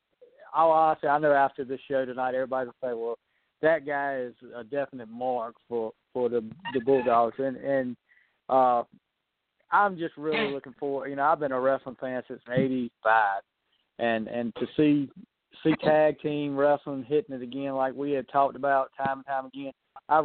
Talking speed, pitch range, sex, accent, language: 185 wpm, 130-145 Hz, male, American, English